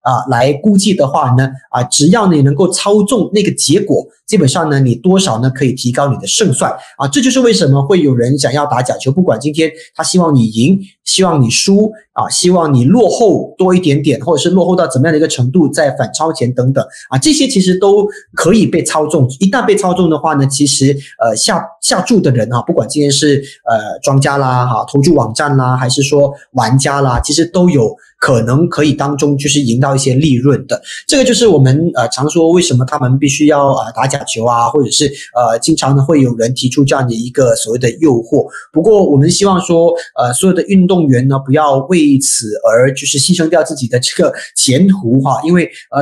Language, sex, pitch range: Chinese, male, 130-175 Hz